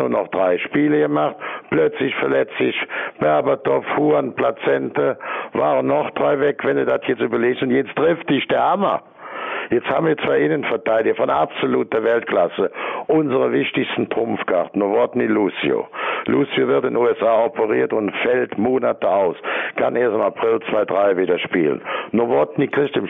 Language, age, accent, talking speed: German, 60-79, German, 155 wpm